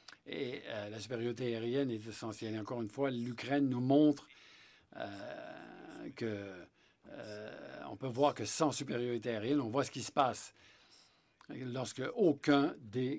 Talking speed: 145 wpm